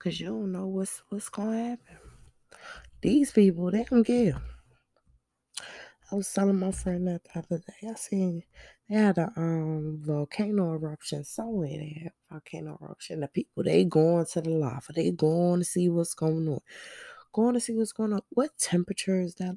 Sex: female